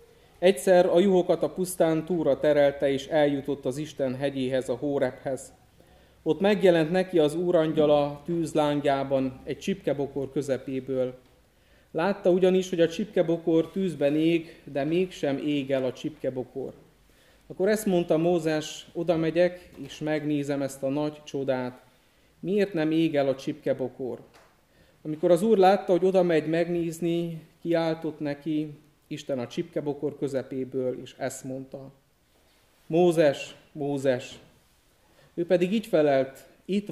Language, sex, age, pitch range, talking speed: Hungarian, male, 30-49, 140-170 Hz, 125 wpm